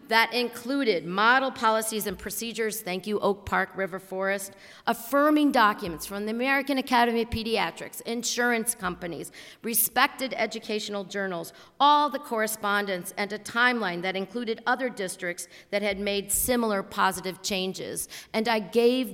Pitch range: 190-245 Hz